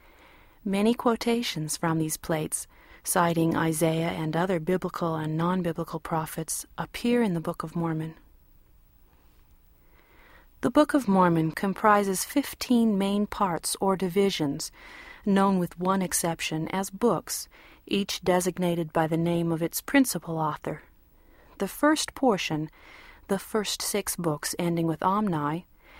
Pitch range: 165-215 Hz